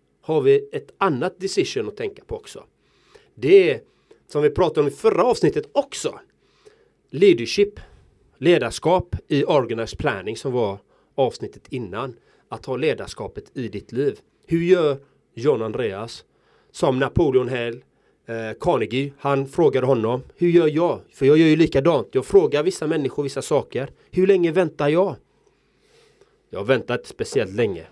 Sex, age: male, 30-49